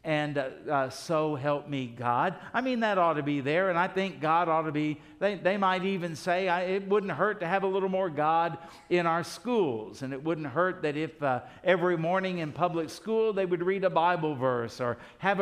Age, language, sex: 60-79, English, male